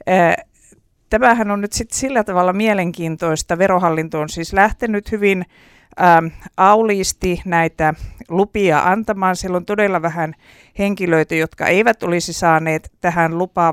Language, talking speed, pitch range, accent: Finnish, 120 wpm, 160-200 Hz, native